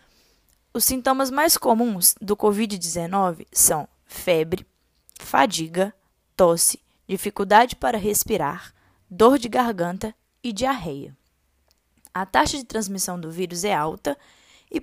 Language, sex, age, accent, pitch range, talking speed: Portuguese, female, 10-29, Brazilian, 190-245 Hz, 110 wpm